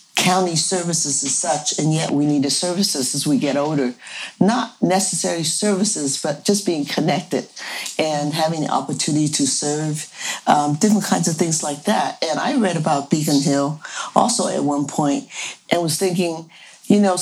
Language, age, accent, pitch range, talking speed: English, 50-69, American, 150-190 Hz, 170 wpm